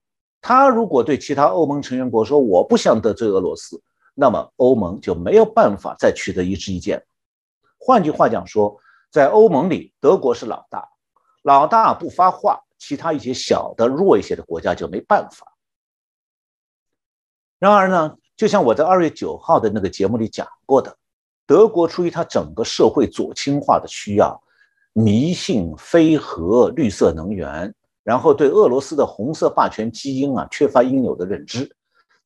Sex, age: male, 50-69